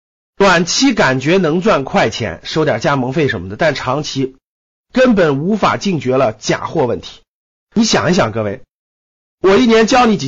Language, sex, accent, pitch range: Chinese, male, native, 130-205 Hz